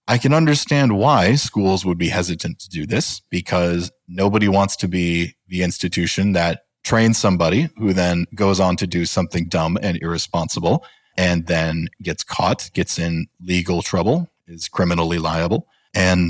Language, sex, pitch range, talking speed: English, male, 90-130 Hz, 160 wpm